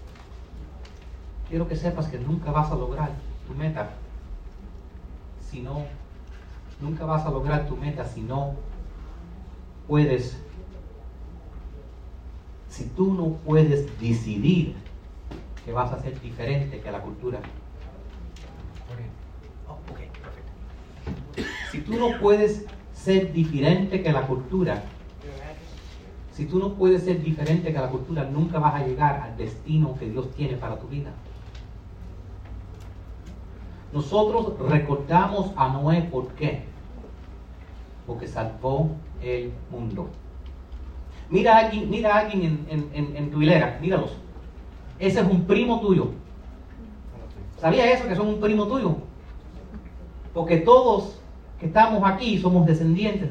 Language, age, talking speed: Spanish, 40-59, 115 wpm